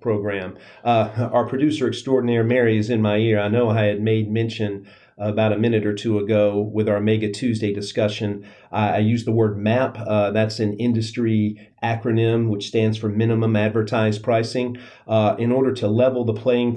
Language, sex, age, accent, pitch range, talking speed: English, male, 40-59, American, 105-115 Hz, 185 wpm